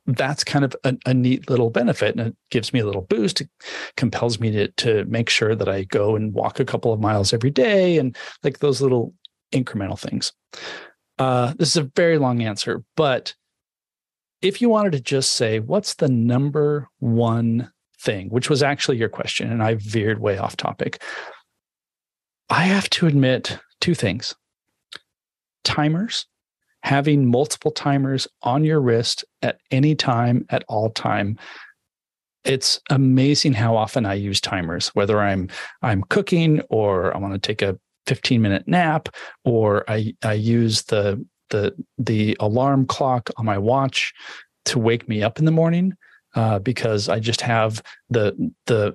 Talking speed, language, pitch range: 165 wpm, English, 110-140 Hz